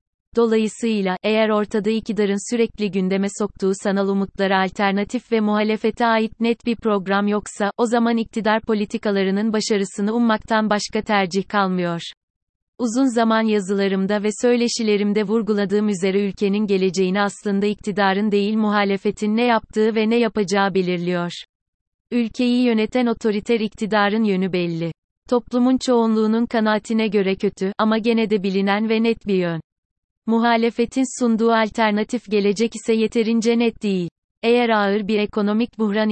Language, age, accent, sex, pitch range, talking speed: Turkish, 30-49, native, female, 200-225 Hz, 130 wpm